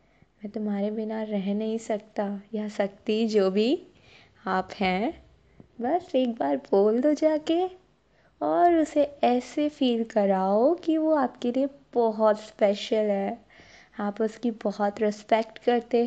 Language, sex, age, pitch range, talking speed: Hindi, female, 20-39, 215-285 Hz, 130 wpm